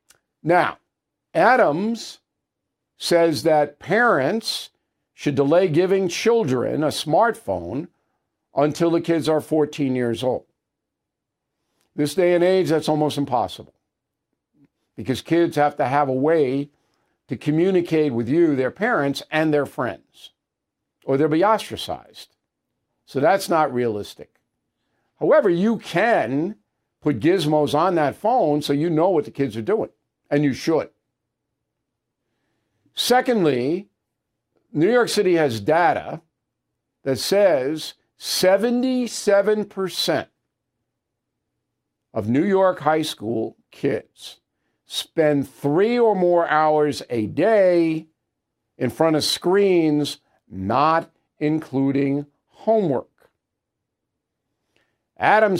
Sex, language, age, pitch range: male, English, 50-69, 140-180 Hz